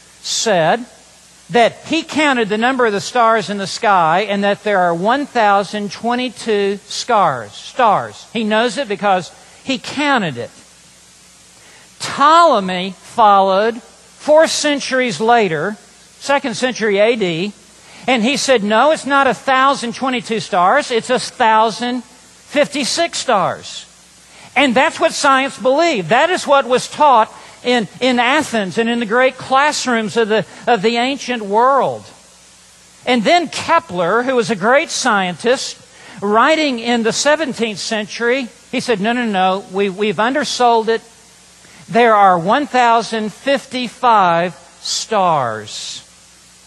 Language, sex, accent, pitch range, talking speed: English, male, American, 195-255 Hz, 120 wpm